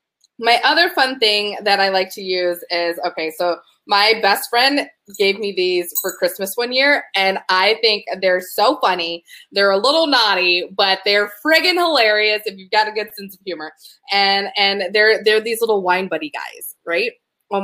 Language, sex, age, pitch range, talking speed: English, female, 20-39, 190-260 Hz, 185 wpm